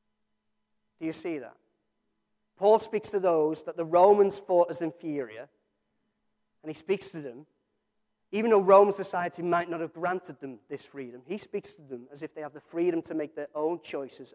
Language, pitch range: English, 155-220 Hz